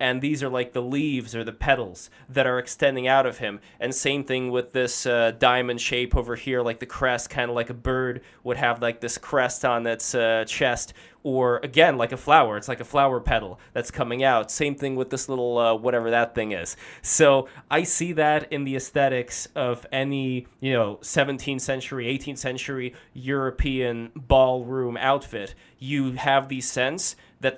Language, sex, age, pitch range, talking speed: English, male, 20-39, 120-135 Hz, 190 wpm